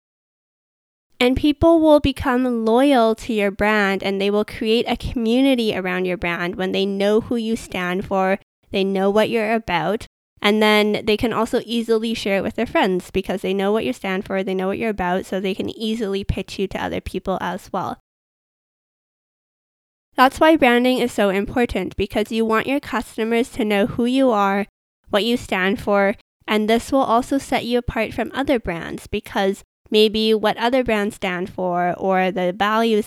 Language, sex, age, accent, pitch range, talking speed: English, female, 20-39, American, 195-240 Hz, 185 wpm